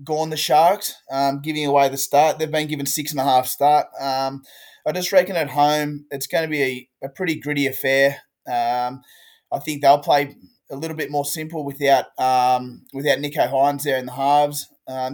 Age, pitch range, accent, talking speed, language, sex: 20-39, 130-150 Hz, Australian, 200 wpm, English, male